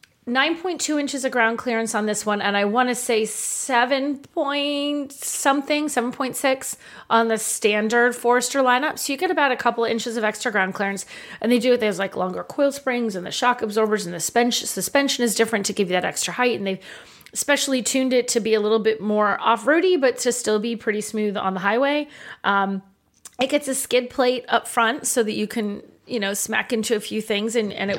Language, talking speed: English, 215 wpm